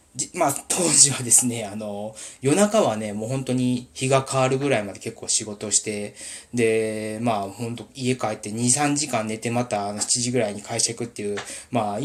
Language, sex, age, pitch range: Japanese, male, 20-39, 110-165 Hz